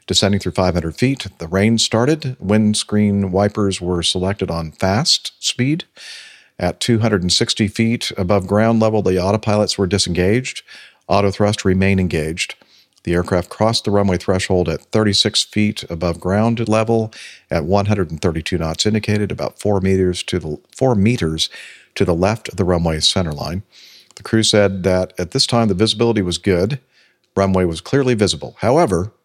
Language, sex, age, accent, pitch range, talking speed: English, male, 50-69, American, 90-110 Hz, 150 wpm